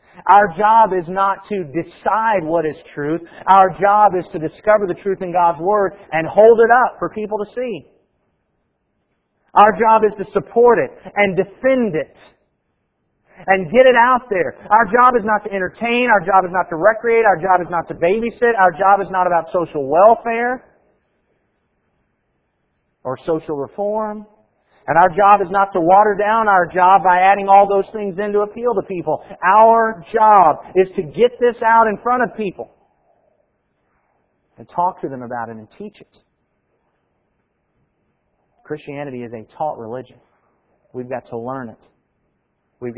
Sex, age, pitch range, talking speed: male, 40-59, 155-215 Hz, 170 wpm